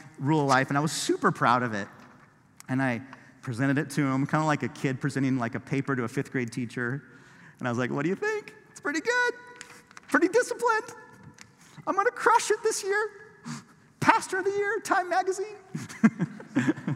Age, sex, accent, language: 40-59, male, American, English